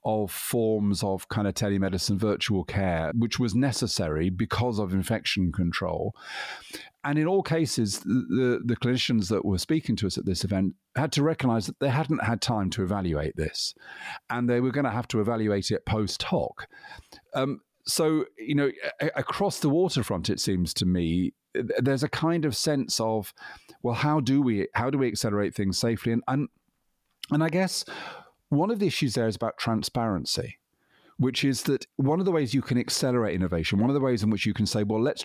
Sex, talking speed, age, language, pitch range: male, 195 wpm, 40-59, English, 95-130 Hz